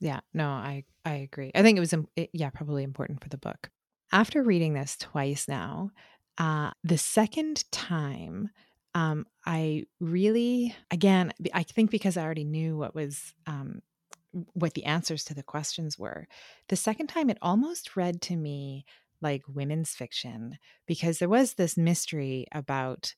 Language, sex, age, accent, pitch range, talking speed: English, female, 30-49, American, 140-200 Hz, 155 wpm